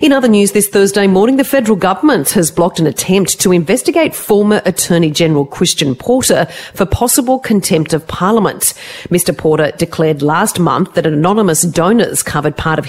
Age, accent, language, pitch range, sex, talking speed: 40-59, Australian, English, 155-205 Hz, female, 170 wpm